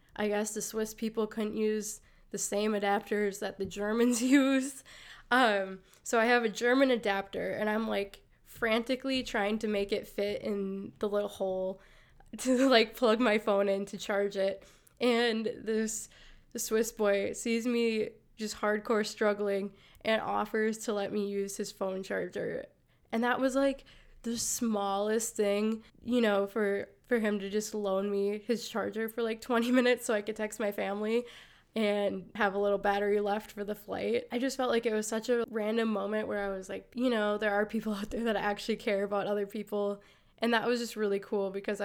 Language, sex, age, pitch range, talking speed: English, female, 10-29, 200-230 Hz, 190 wpm